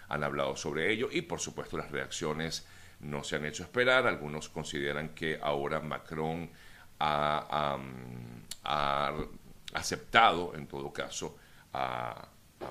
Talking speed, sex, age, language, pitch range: 125 wpm, male, 60-79, Spanish, 70-85 Hz